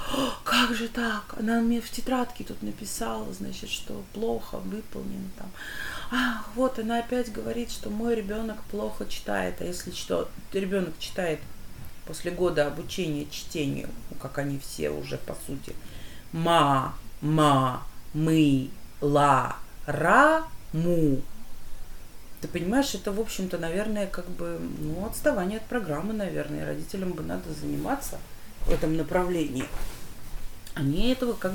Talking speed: 120 wpm